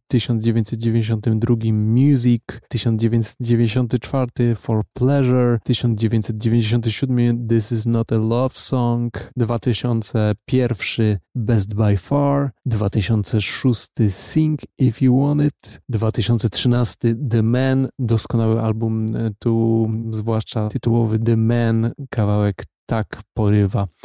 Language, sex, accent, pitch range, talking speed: Polish, male, native, 110-125 Hz, 85 wpm